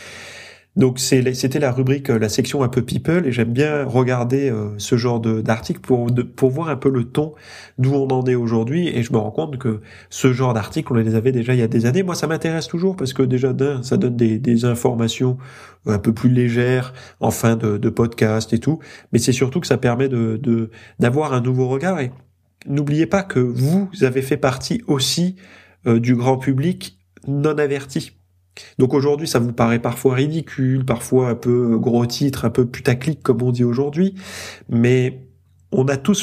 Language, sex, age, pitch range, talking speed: French, male, 30-49, 115-140 Hz, 200 wpm